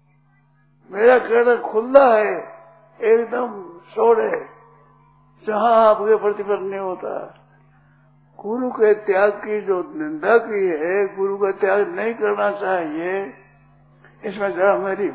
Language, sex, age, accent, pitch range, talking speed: Hindi, male, 60-79, native, 155-235 Hz, 115 wpm